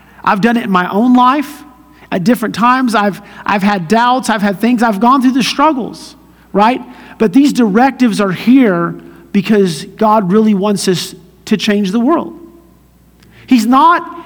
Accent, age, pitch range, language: American, 50-69, 185-250 Hz, English